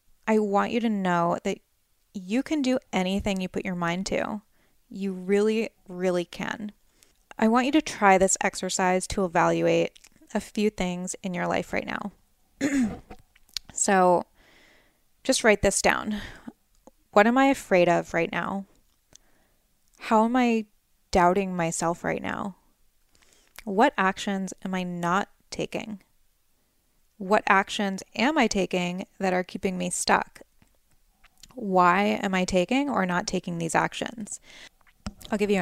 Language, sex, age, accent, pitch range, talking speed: English, female, 20-39, American, 180-220 Hz, 140 wpm